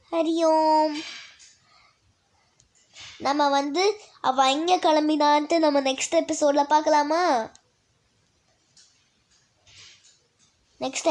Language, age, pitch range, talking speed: Tamil, 20-39, 295-400 Hz, 60 wpm